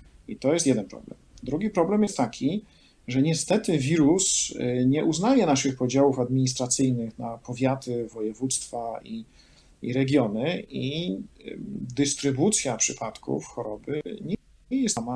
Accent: native